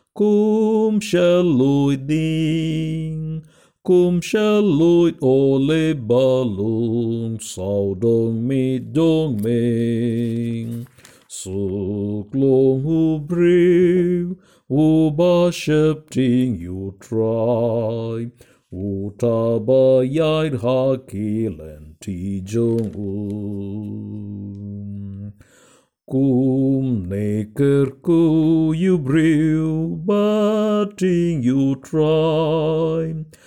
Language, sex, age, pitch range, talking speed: Tamil, male, 50-69, 110-160 Hz, 55 wpm